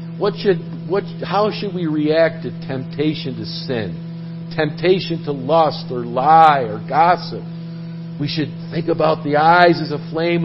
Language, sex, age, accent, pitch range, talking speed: English, male, 50-69, American, 150-165 Hz, 155 wpm